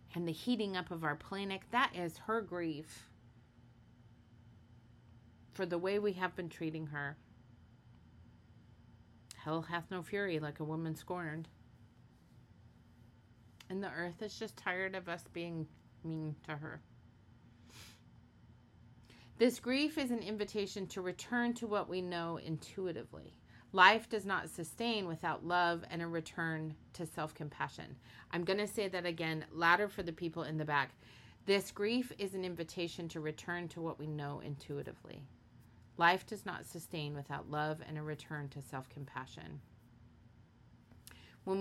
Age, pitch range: 30-49, 120-180 Hz